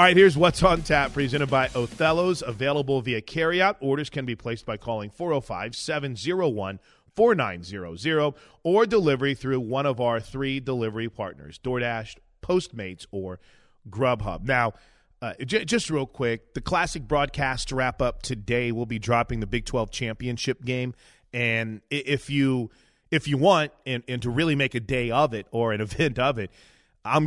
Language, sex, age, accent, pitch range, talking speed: English, male, 30-49, American, 115-145 Hz, 160 wpm